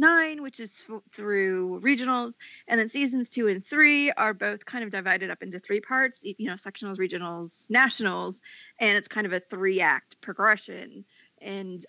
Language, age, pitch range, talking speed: English, 20-39, 200-265 Hz, 165 wpm